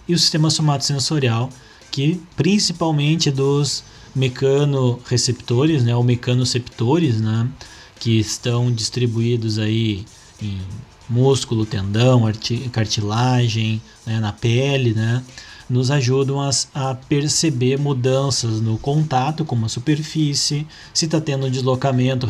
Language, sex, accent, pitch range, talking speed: Portuguese, male, Brazilian, 120-145 Hz, 110 wpm